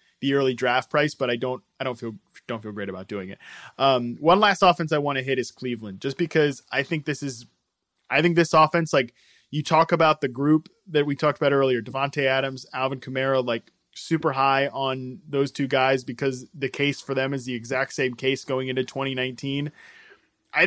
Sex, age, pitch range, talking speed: male, 20-39, 130-165 Hz, 210 wpm